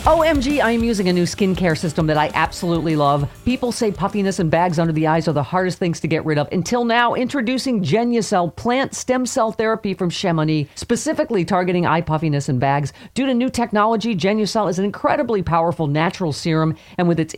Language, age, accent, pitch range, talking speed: English, 40-59, American, 165-230 Hz, 200 wpm